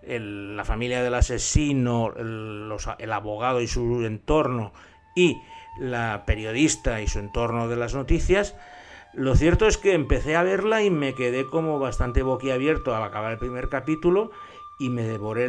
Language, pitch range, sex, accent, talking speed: Spanish, 115-150 Hz, male, Spanish, 160 wpm